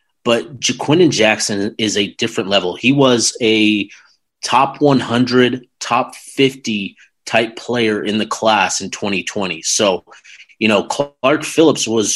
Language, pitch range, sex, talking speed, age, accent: English, 105-125 Hz, male, 130 wpm, 30-49, American